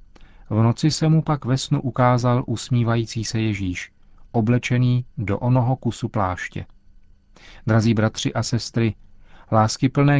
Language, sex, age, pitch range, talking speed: Czech, male, 40-59, 105-125 Hz, 125 wpm